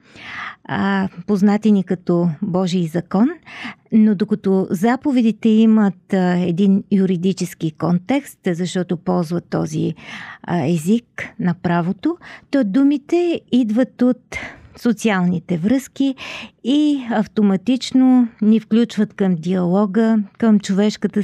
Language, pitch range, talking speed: Bulgarian, 185-240 Hz, 90 wpm